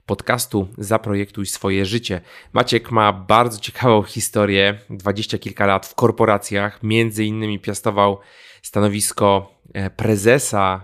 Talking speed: 105 wpm